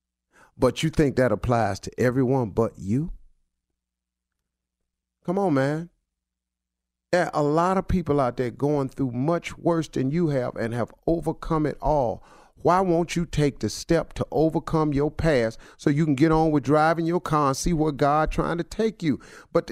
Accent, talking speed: American, 185 wpm